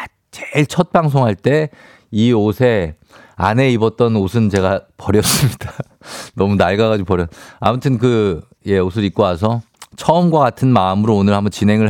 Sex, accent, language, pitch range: male, native, Korean, 95-120 Hz